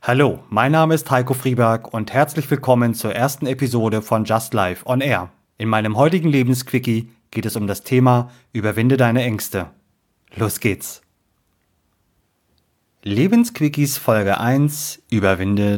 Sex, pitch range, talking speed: male, 105-135 Hz, 135 wpm